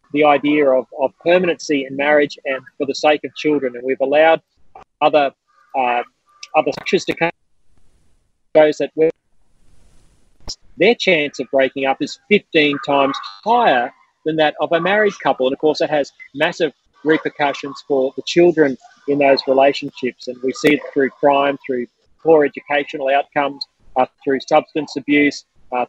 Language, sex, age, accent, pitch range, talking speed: English, male, 30-49, Australian, 135-165 Hz, 160 wpm